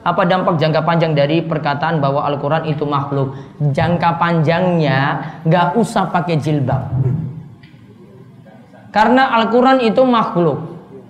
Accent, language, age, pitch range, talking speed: native, Indonesian, 20-39, 165-235 Hz, 110 wpm